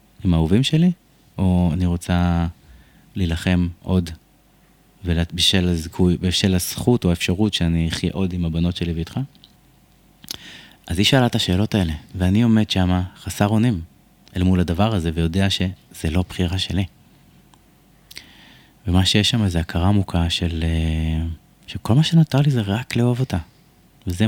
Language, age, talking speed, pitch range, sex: Hebrew, 30-49, 145 wpm, 85-105 Hz, male